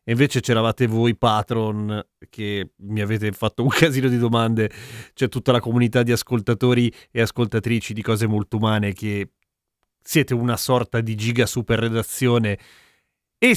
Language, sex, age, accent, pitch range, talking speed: Italian, male, 30-49, native, 105-140 Hz, 145 wpm